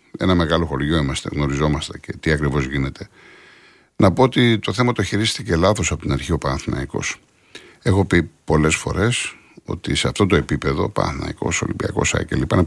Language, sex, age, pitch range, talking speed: Greek, male, 50-69, 75-105 Hz, 165 wpm